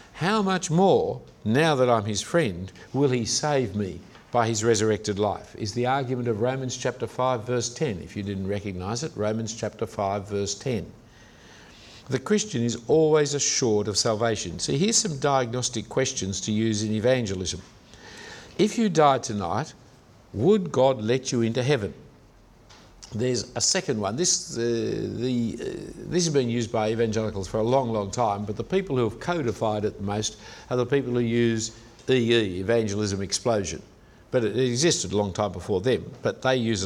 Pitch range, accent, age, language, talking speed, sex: 105-135 Hz, Australian, 60-79, English, 175 wpm, male